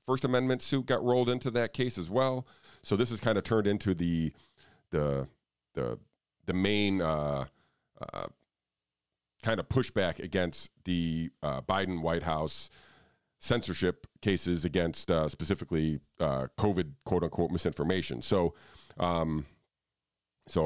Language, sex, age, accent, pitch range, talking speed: English, male, 40-59, American, 90-115 Hz, 130 wpm